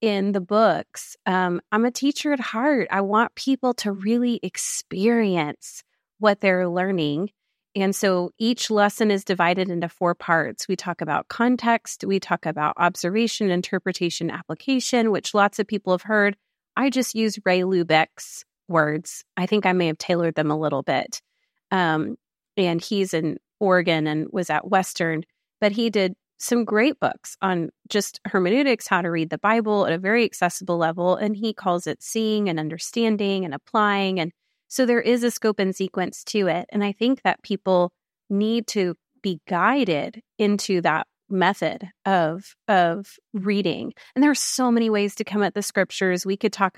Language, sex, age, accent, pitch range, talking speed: English, female, 30-49, American, 175-220 Hz, 175 wpm